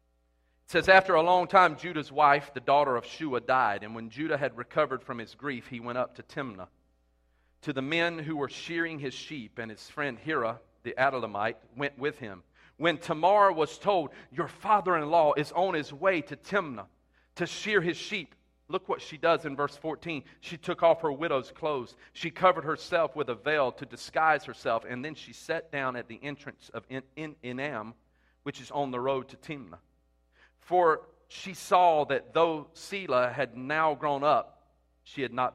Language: English